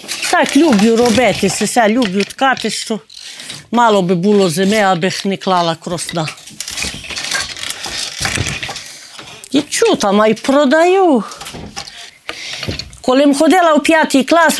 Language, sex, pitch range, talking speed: Ukrainian, female, 195-285 Hz, 105 wpm